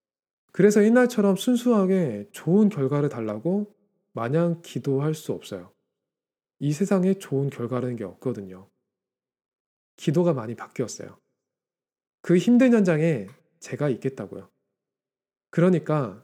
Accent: native